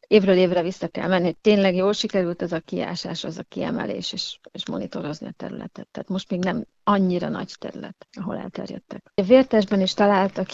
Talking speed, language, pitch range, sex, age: 190 wpm, Hungarian, 185-220 Hz, female, 40-59